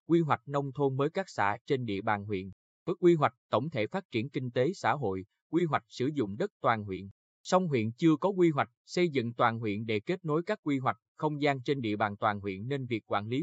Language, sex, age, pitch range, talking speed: Vietnamese, male, 20-39, 110-155 Hz, 250 wpm